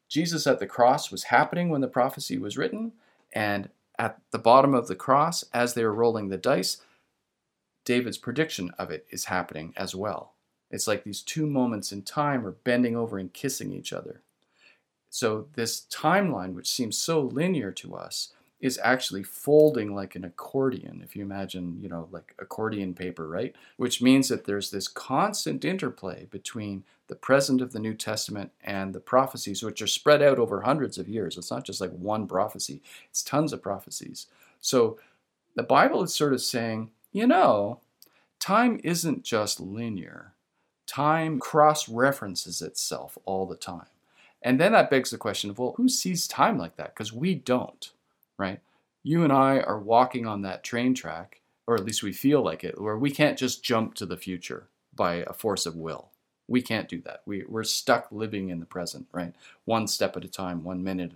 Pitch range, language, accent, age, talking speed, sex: 95-135 Hz, English, American, 40-59, 185 wpm, male